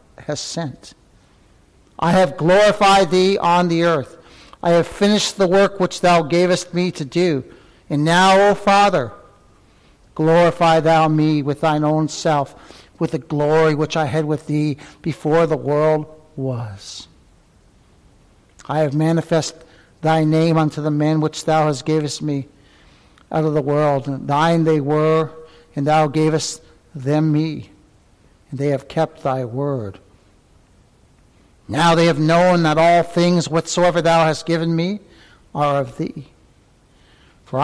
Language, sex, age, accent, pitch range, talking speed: English, male, 60-79, American, 135-165 Hz, 145 wpm